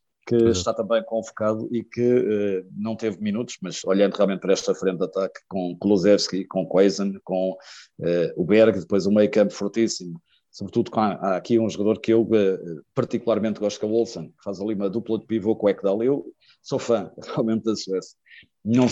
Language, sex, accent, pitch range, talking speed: Portuguese, male, Portuguese, 95-110 Hz, 190 wpm